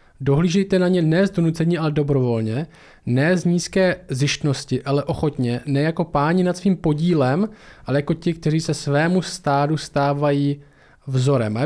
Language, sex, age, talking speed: Czech, male, 20-39, 160 wpm